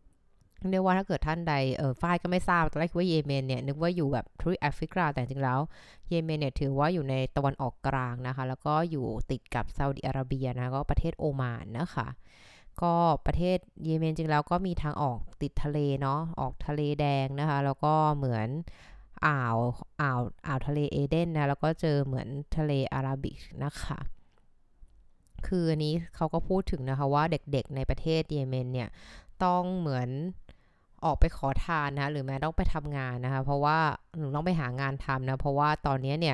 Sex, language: female, Thai